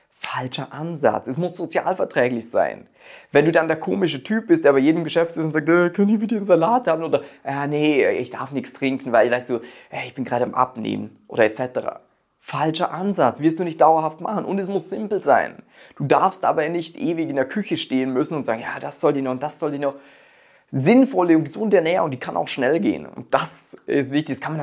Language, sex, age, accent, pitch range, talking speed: German, male, 30-49, German, 130-170 Hz, 225 wpm